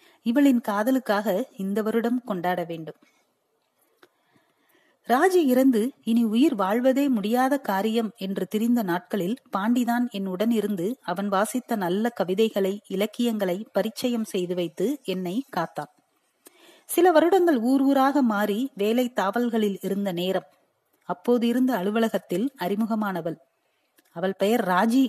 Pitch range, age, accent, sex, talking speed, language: 190-255 Hz, 30-49, native, female, 105 wpm, Tamil